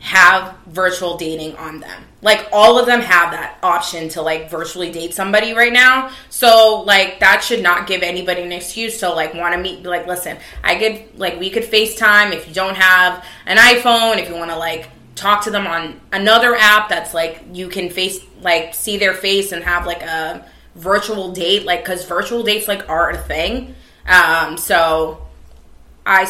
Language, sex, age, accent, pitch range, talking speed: English, female, 20-39, American, 170-210 Hz, 190 wpm